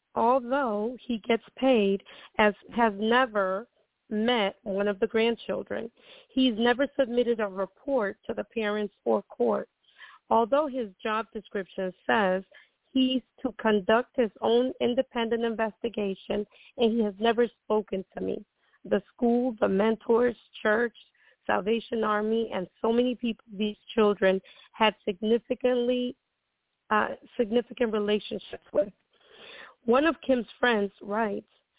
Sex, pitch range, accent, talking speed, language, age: female, 205-240 Hz, American, 120 wpm, English, 40-59